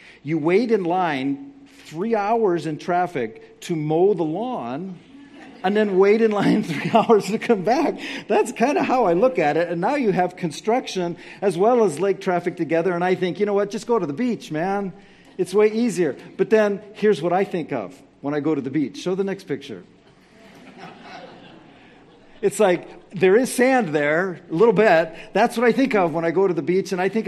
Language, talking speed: English, 210 wpm